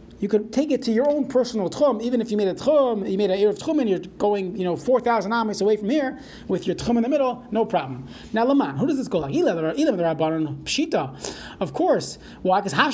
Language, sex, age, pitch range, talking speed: English, male, 30-49, 175-235 Hz, 225 wpm